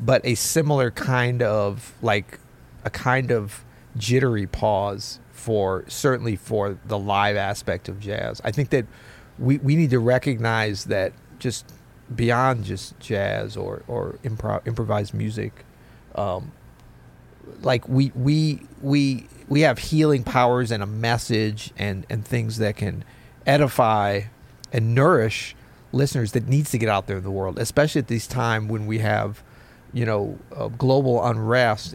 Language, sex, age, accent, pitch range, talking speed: English, male, 40-59, American, 105-130 Hz, 150 wpm